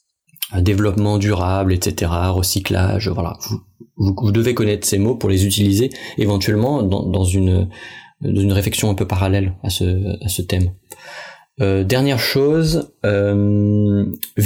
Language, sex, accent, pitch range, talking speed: French, male, French, 95-115 Hz, 145 wpm